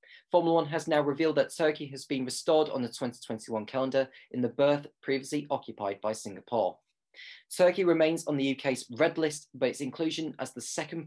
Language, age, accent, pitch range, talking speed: English, 20-39, British, 115-150 Hz, 185 wpm